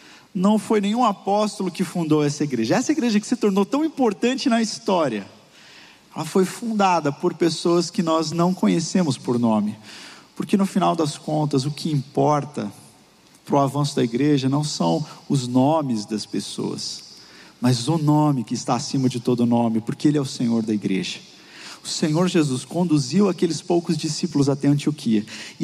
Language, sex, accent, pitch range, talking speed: Portuguese, male, Brazilian, 150-220 Hz, 170 wpm